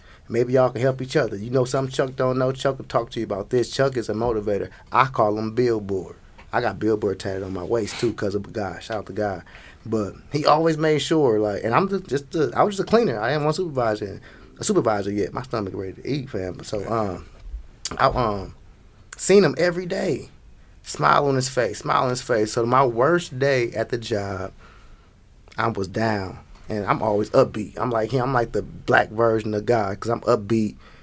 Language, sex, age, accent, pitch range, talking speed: English, male, 20-39, American, 100-125 Hz, 225 wpm